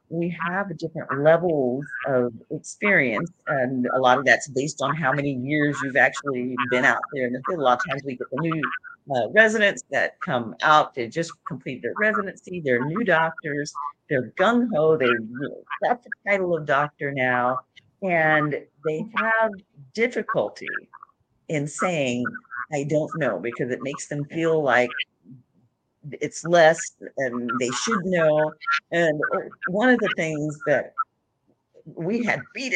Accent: American